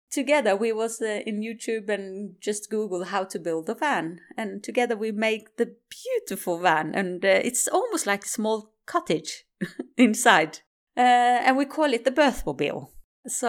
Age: 30-49